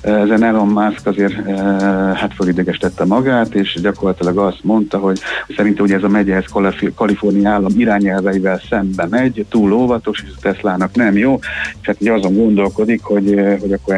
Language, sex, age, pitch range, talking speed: Hungarian, male, 50-69, 95-110 Hz, 155 wpm